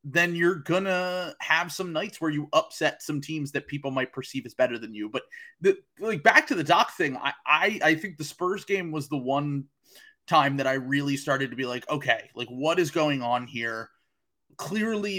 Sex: male